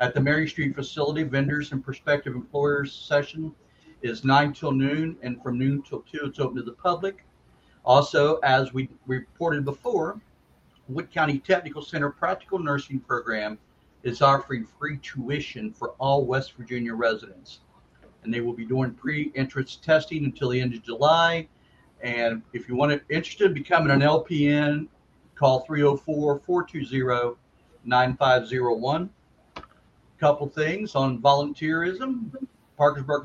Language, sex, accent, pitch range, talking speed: English, male, American, 125-150 Hz, 135 wpm